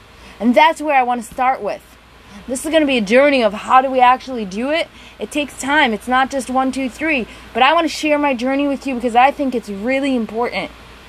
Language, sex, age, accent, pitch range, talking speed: English, female, 30-49, American, 235-290 Hz, 235 wpm